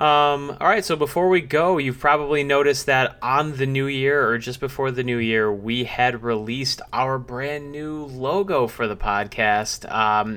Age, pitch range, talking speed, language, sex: 30-49, 110-140 Hz, 180 wpm, English, male